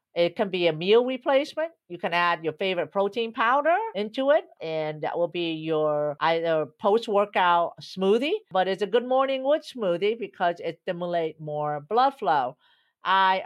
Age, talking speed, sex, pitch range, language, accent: 50-69, 165 wpm, female, 165-215 Hz, English, American